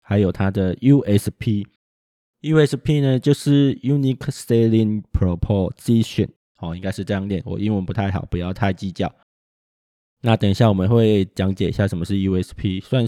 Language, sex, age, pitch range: Chinese, male, 20-39, 95-120 Hz